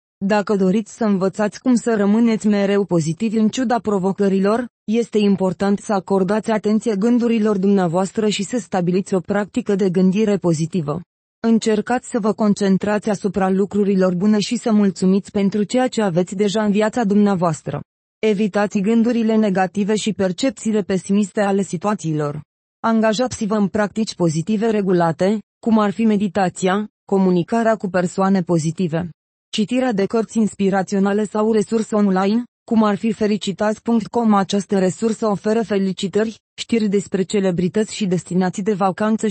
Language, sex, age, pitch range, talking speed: Romanian, female, 20-39, 195-220 Hz, 135 wpm